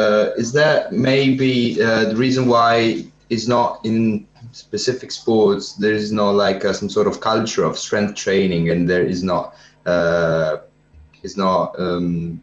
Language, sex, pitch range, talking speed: Italian, male, 95-125 Hz, 155 wpm